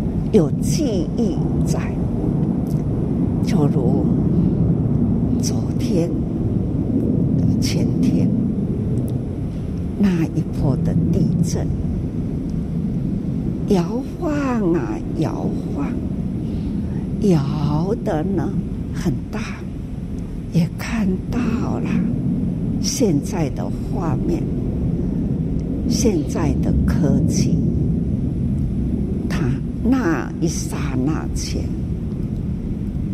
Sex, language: female, Chinese